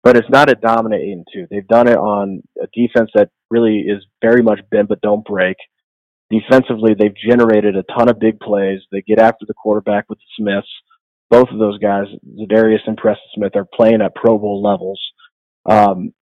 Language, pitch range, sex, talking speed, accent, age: English, 100-120 Hz, male, 190 wpm, American, 30-49